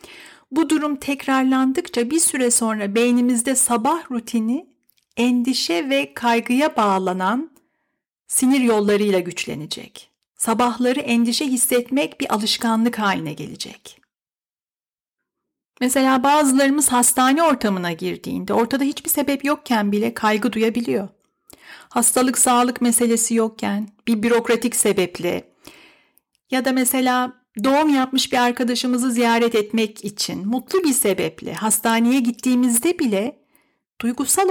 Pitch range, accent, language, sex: 210-265 Hz, native, Turkish, female